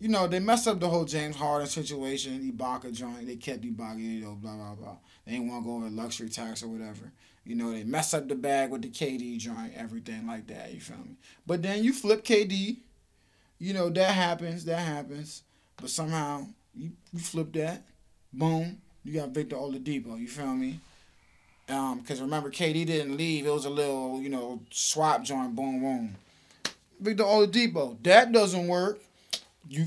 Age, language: 20-39, English